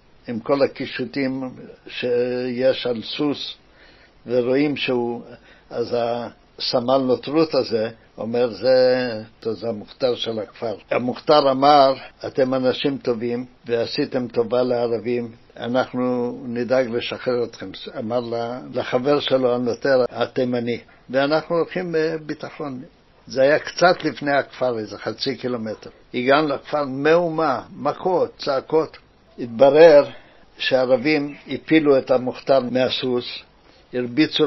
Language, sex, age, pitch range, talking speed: Hebrew, male, 60-79, 125-145 Hz, 100 wpm